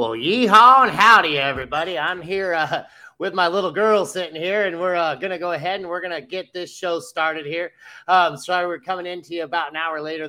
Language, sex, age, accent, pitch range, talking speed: English, male, 30-49, American, 145-180 Hz, 220 wpm